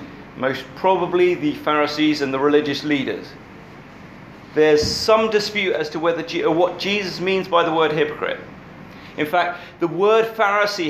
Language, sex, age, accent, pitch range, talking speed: English, male, 30-49, British, 145-175 Hz, 150 wpm